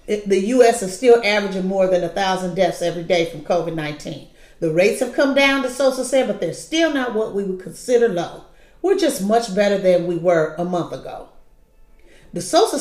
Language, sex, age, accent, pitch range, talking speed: English, female, 40-59, American, 185-245 Hz, 185 wpm